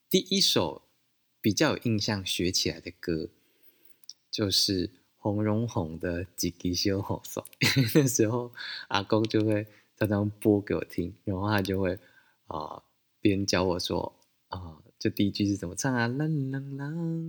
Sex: male